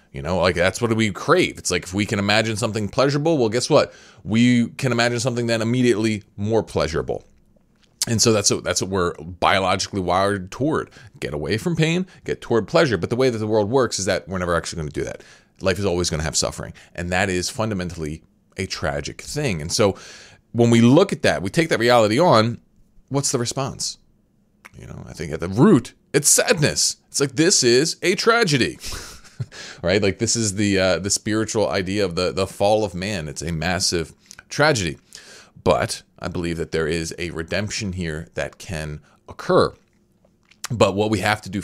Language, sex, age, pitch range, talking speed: English, male, 30-49, 90-120 Hz, 200 wpm